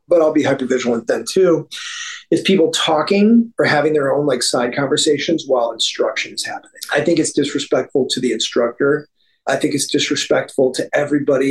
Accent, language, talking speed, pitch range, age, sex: American, English, 170 wpm, 145-205 Hz, 30-49, male